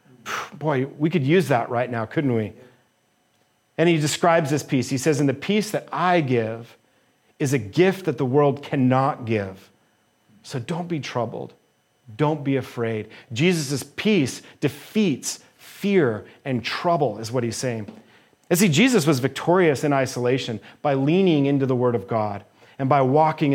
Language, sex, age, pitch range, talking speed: English, male, 40-59, 125-175 Hz, 165 wpm